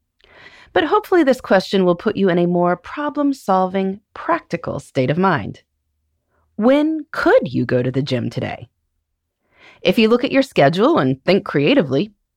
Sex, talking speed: female, 155 wpm